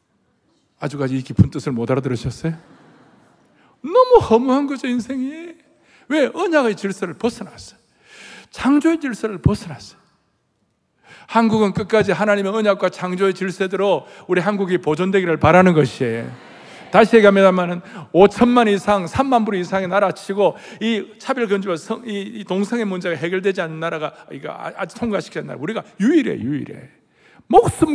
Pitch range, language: 170-225 Hz, Korean